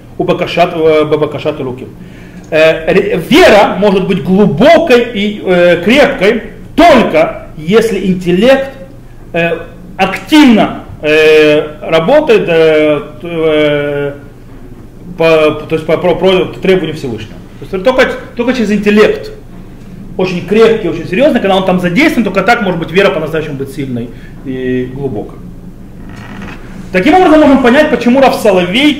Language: Russian